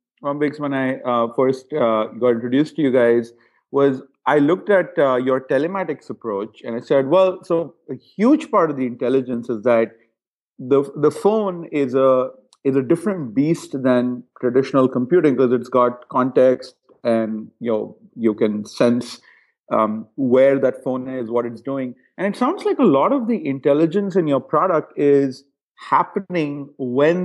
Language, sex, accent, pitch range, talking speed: English, male, Indian, 130-155 Hz, 170 wpm